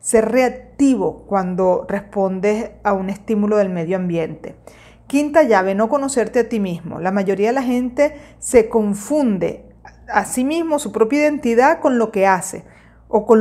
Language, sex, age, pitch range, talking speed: Spanish, female, 40-59, 210-275 Hz, 160 wpm